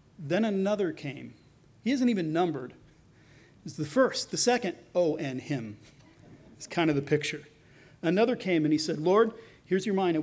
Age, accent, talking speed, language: 40-59, American, 170 wpm, English